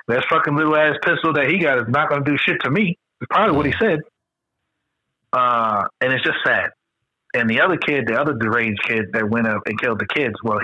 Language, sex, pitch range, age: English, male, 105-135 Hz, 30-49